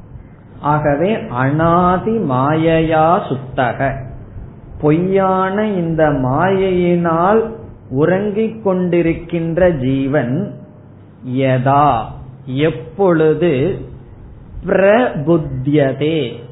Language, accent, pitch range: Tamil, native, 135-180 Hz